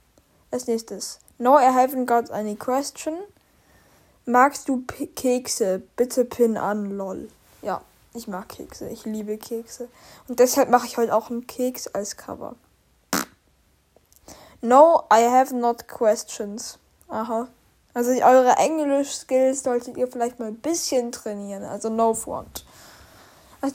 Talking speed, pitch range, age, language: 135 wpm, 220-260 Hz, 10-29, German